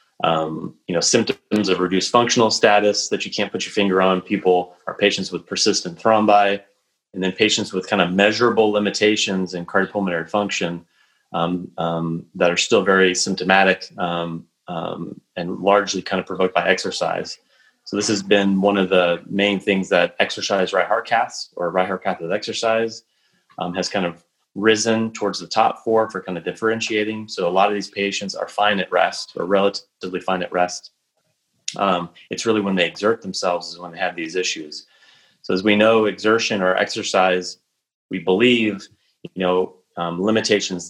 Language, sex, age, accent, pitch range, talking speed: English, male, 30-49, American, 90-105 Hz, 180 wpm